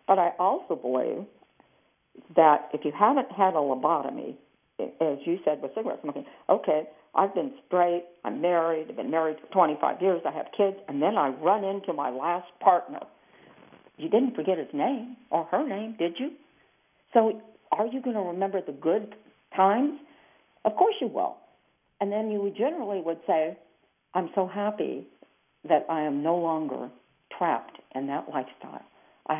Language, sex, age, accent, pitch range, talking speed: English, female, 60-79, American, 165-220 Hz, 165 wpm